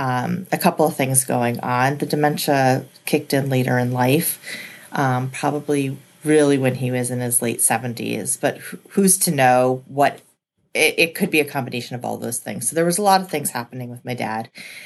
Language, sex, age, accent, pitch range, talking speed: English, female, 30-49, American, 125-150 Hz, 200 wpm